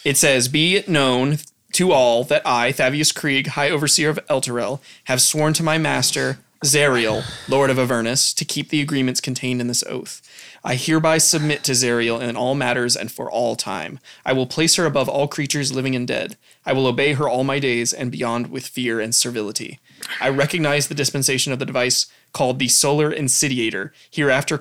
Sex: male